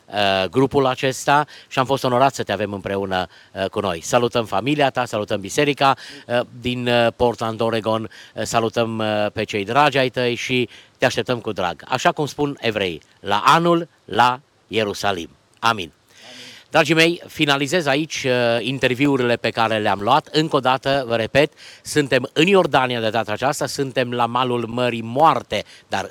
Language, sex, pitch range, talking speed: Romanian, male, 115-150 Hz, 155 wpm